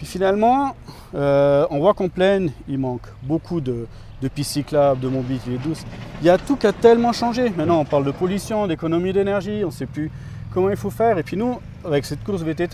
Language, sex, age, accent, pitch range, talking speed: French, male, 40-59, French, 130-180 Hz, 220 wpm